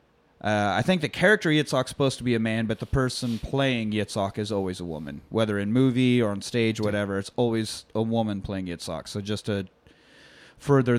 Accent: American